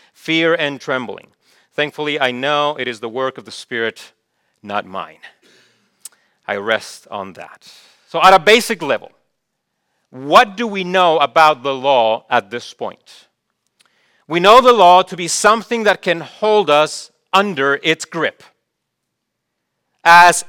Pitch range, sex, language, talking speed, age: 160-205 Hz, male, English, 145 wpm, 40-59